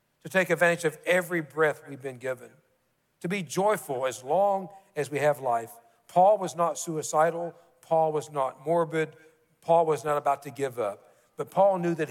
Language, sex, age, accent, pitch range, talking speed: English, male, 60-79, American, 135-175 Hz, 185 wpm